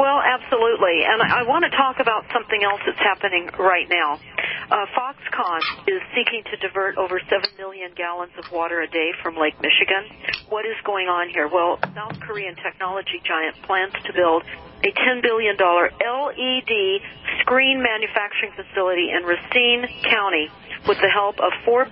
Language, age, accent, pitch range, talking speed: English, 50-69, American, 180-235 Hz, 160 wpm